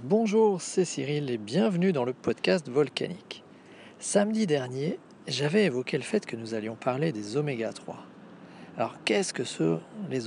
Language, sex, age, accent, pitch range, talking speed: French, male, 40-59, French, 125-175 Hz, 150 wpm